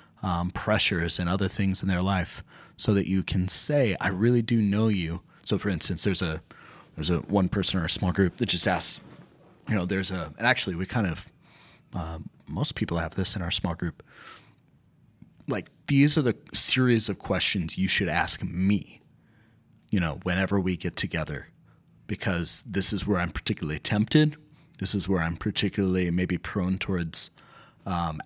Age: 30-49